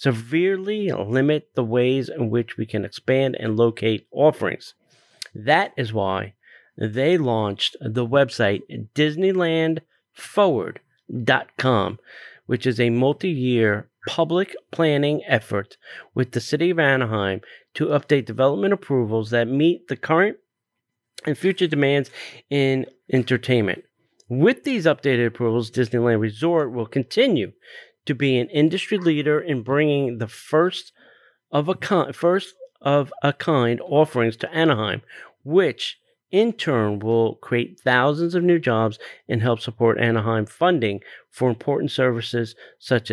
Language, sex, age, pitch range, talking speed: English, male, 30-49, 115-155 Hz, 115 wpm